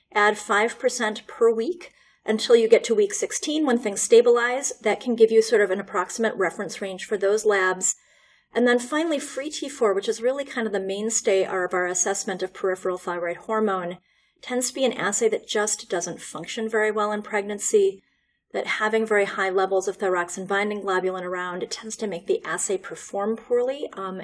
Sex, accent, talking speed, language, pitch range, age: female, American, 190 wpm, English, 195-280 Hz, 40-59